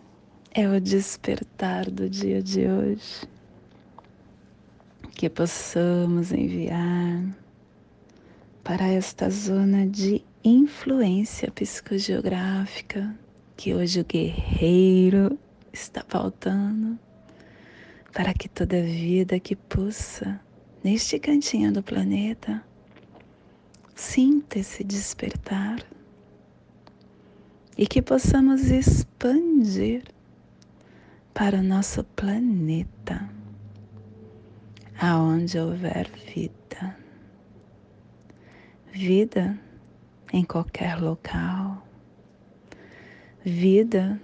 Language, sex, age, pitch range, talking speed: Portuguese, female, 30-49, 165-210 Hz, 70 wpm